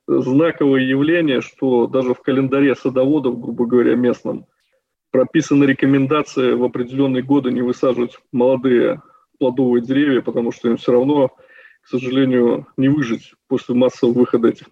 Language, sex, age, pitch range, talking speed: Russian, male, 20-39, 125-140 Hz, 135 wpm